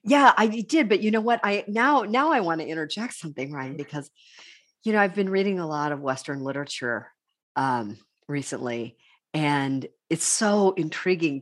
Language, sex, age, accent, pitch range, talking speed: English, female, 50-69, American, 145-200 Hz, 175 wpm